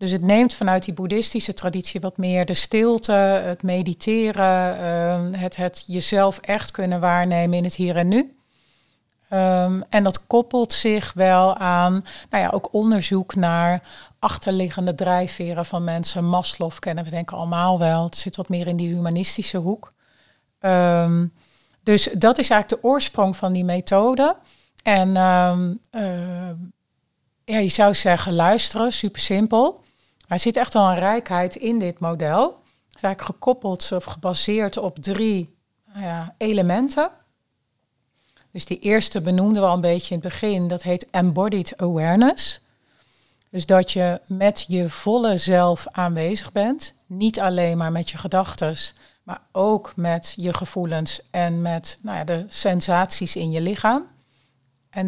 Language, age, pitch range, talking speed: Dutch, 40-59, 175-205 Hz, 145 wpm